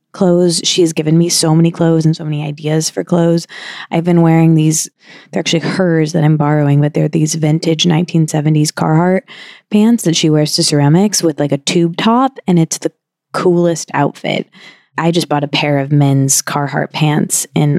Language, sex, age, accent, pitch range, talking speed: English, female, 20-39, American, 155-175 Hz, 190 wpm